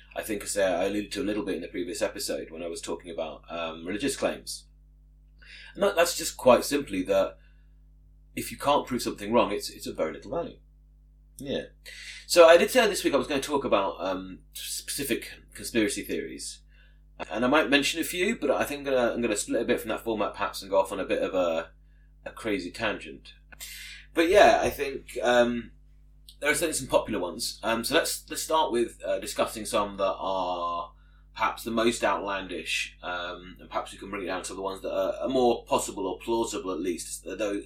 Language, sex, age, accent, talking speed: English, male, 30-49, British, 215 wpm